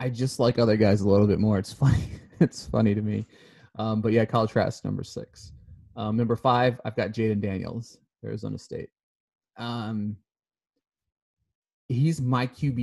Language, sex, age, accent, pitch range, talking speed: English, male, 30-49, American, 110-135 Hz, 180 wpm